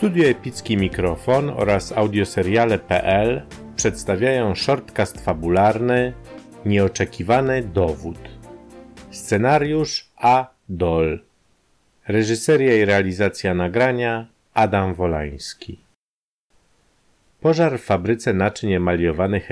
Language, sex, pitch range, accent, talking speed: Polish, male, 90-115 Hz, native, 75 wpm